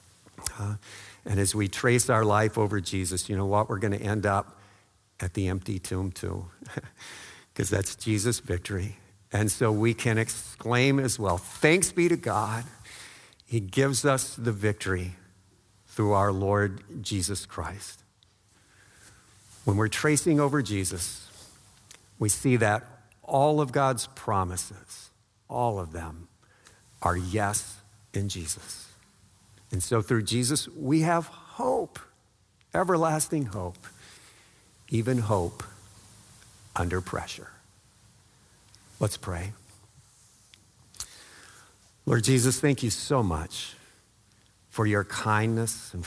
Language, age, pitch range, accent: English, 50-69, 100-120 Hz, American